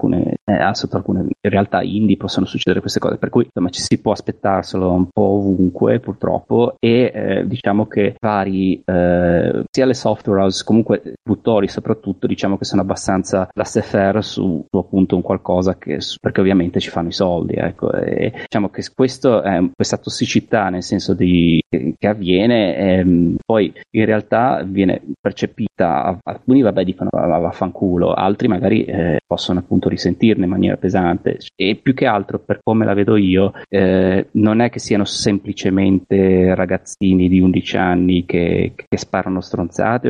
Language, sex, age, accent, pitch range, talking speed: Italian, male, 30-49, native, 90-105 Hz, 165 wpm